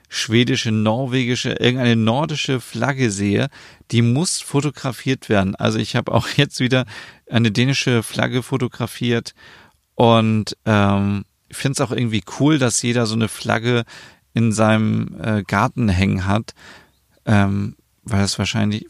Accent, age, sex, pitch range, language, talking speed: German, 40-59, male, 105-125 Hz, German, 130 wpm